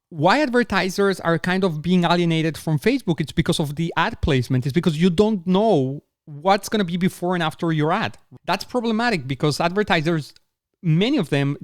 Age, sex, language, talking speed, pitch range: 30-49, male, English, 185 wpm, 150-205 Hz